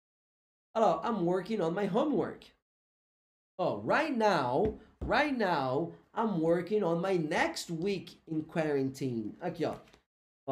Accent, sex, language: Brazilian, male, Portuguese